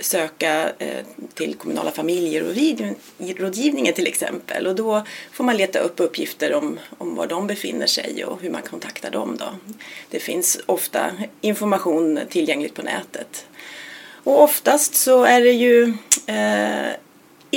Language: Swedish